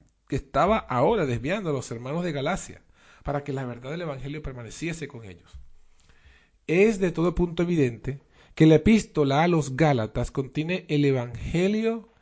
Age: 40-59